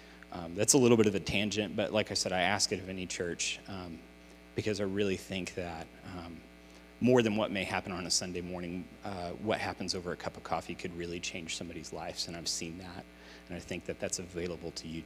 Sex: male